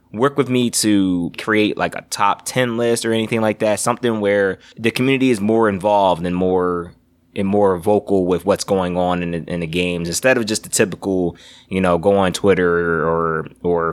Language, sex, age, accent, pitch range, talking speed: English, male, 20-39, American, 85-105 Hz, 200 wpm